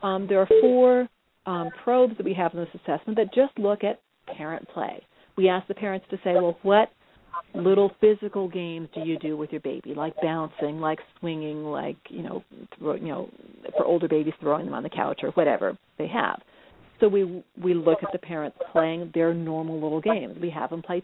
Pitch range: 165-205 Hz